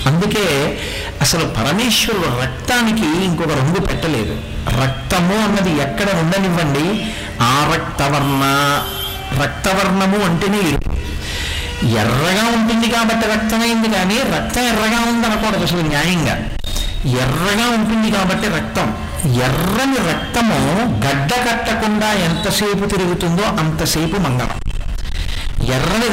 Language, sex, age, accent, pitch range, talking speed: Telugu, male, 60-79, native, 145-215 Hz, 85 wpm